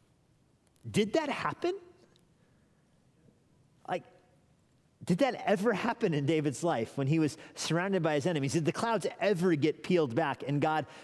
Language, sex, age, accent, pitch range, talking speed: English, male, 30-49, American, 135-180 Hz, 145 wpm